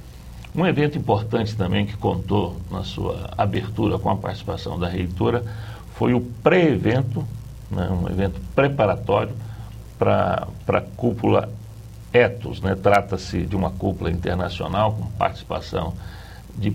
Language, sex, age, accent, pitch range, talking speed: Portuguese, male, 60-79, Brazilian, 95-110 Hz, 120 wpm